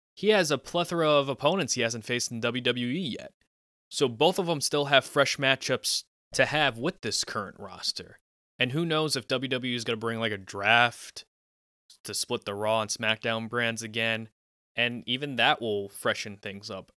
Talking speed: 185 wpm